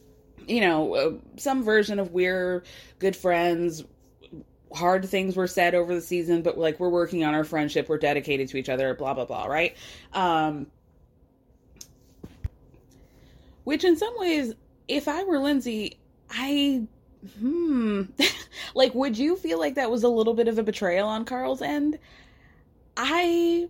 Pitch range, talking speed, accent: 170-250 Hz, 150 wpm, American